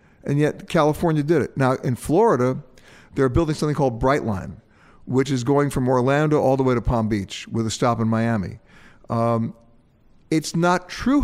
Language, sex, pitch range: English, male, 115-150 Hz